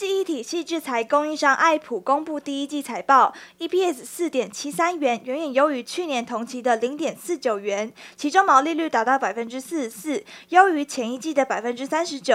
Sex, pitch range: female, 250-320 Hz